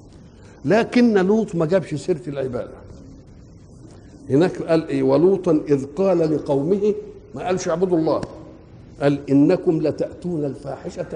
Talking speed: 110 wpm